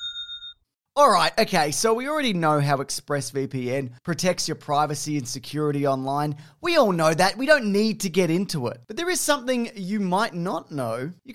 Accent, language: Australian, English